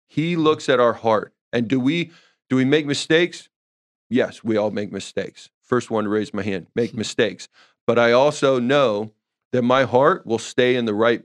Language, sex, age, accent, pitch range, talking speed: English, male, 30-49, American, 110-130 Hz, 195 wpm